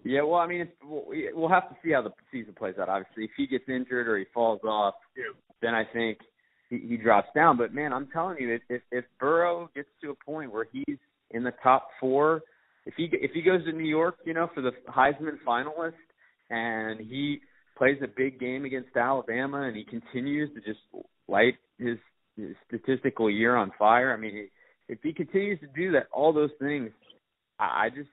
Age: 30-49